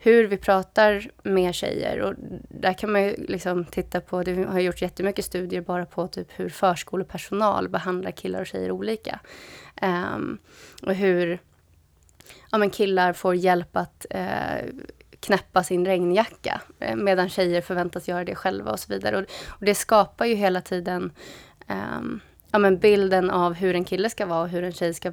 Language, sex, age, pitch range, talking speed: Swedish, female, 20-39, 180-200 Hz, 170 wpm